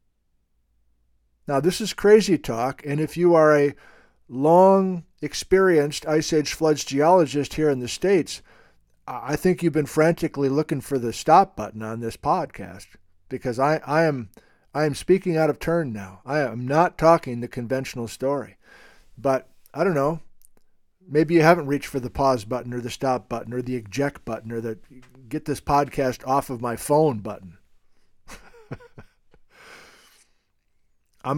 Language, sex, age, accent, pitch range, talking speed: English, male, 50-69, American, 120-165 Hz, 140 wpm